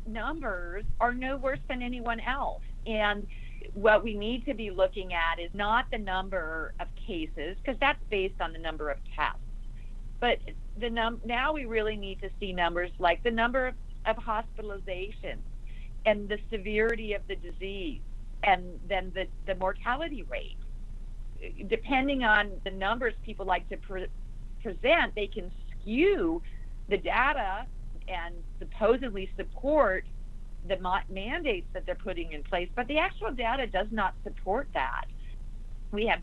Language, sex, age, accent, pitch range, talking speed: English, female, 50-69, American, 190-245 Hz, 150 wpm